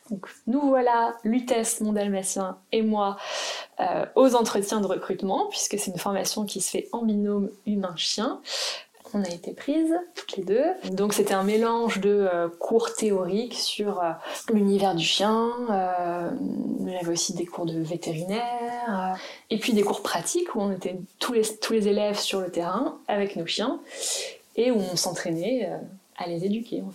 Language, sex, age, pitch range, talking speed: French, female, 20-39, 180-225 Hz, 180 wpm